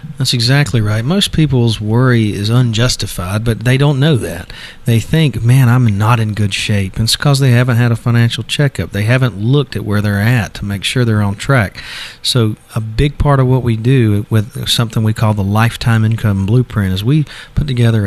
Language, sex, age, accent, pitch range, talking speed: English, male, 40-59, American, 100-125 Hz, 205 wpm